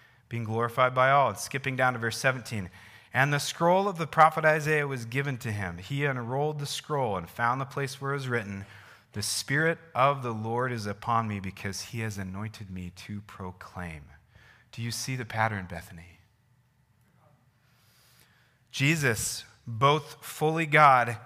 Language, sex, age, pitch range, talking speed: English, male, 30-49, 110-140 Hz, 160 wpm